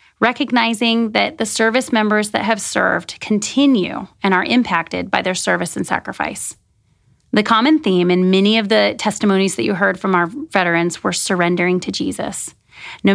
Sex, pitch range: female, 185-220 Hz